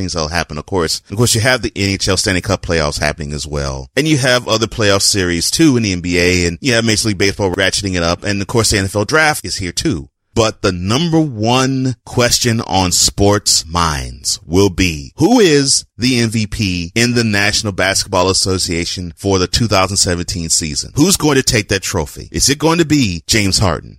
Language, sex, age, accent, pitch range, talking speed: English, male, 30-49, American, 85-110 Hz, 205 wpm